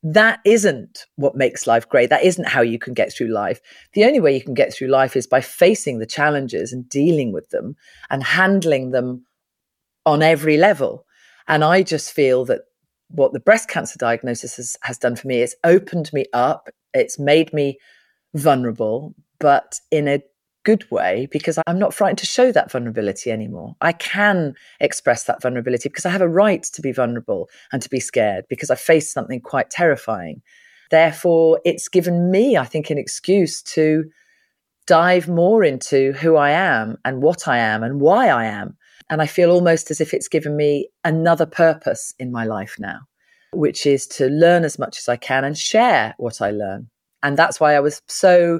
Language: English